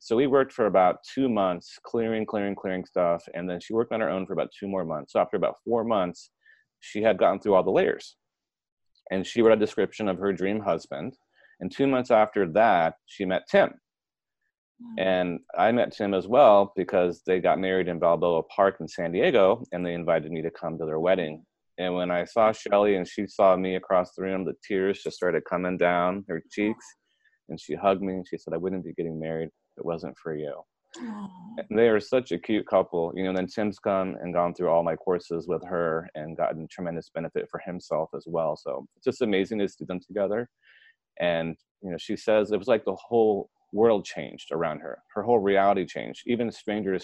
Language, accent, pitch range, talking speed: English, American, 90-105 Hz, 220 wpm